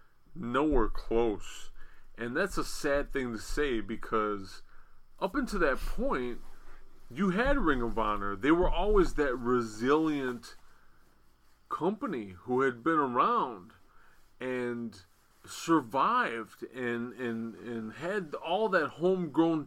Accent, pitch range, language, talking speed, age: American, 115-150 Hz, English, 115 wpm, 30-49